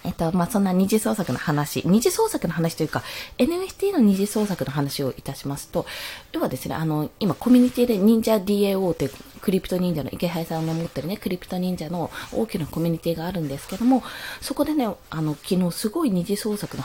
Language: Japanese